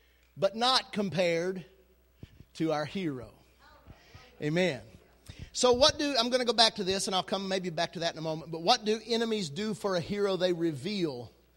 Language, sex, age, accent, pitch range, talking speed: English, male, 40-59, American, 170-225 Hz, 190 wpm